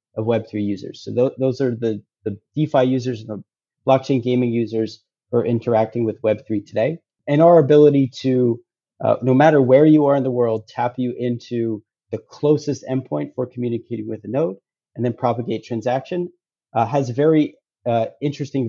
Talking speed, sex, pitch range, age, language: 175 wpm, male, 115-135 Hz, 30-49, English